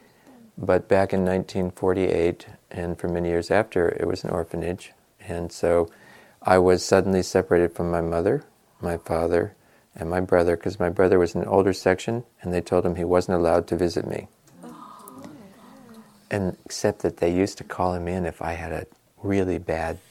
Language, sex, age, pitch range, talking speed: English, male, 40-59, 90-125 Hz, 180 wpm